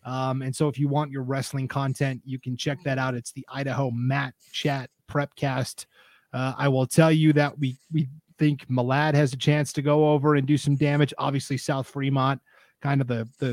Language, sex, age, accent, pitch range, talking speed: English, male, 30-49, American, 130-150 Hz, 210 wpm